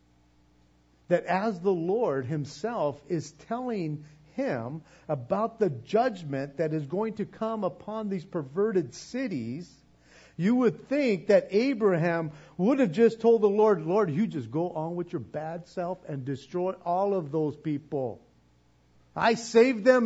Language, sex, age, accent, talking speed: English, male, 50-69, American, 145 wpm